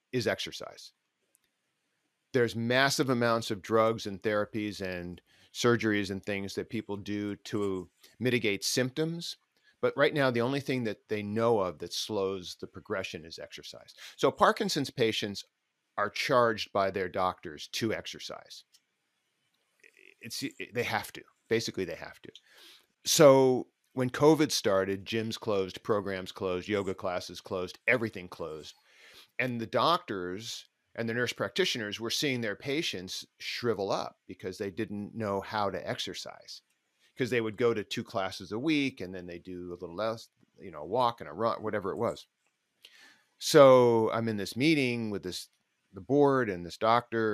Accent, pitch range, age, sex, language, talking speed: American, 100-125 Hz, 40-59, male, English, 155 wpm